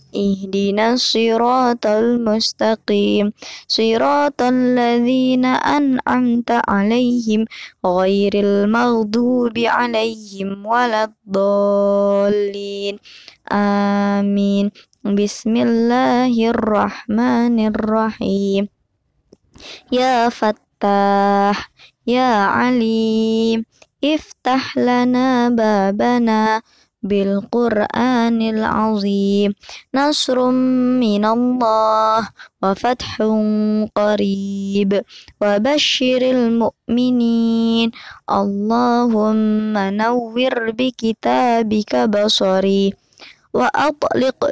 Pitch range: 205-245 Hz